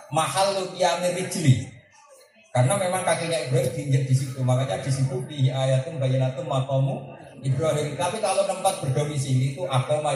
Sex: male